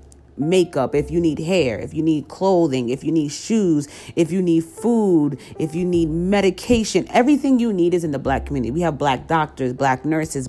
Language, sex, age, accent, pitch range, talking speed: English, female, 40-59, American, 130-165 Hz, 200 wpm